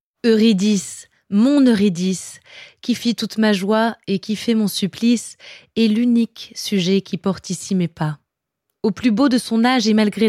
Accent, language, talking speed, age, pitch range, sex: French, French, 170 wpm, 20-39, 185-225 Hz, female